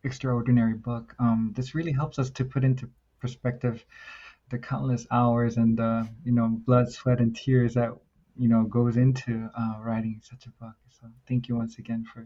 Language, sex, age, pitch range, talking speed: English, male, 20-39, 115-130 Hz, 190 wpm